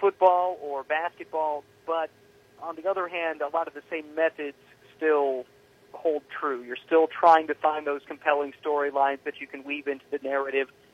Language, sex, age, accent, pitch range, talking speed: English, male, 40-59, American, 140-160 Hz, 175 wpm